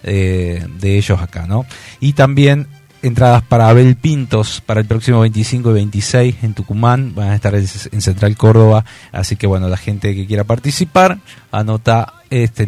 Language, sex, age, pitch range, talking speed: Spanish, male, 30-49, 100-125 Hz, 165 wpm